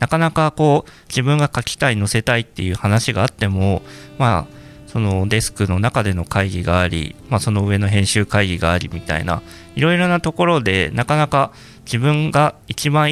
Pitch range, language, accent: 95-135 Hz, Japanese, native